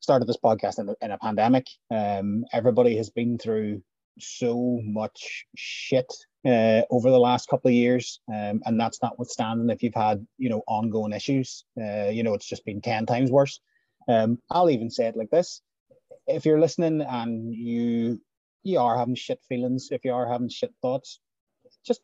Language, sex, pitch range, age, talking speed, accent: English, male, 115-140 Hz, 30-49, 180 wpm, Irish